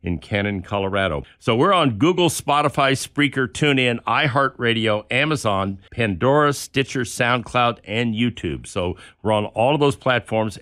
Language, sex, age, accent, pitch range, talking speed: English, male, 50-69, American, 100-130 Hz, 135 wpm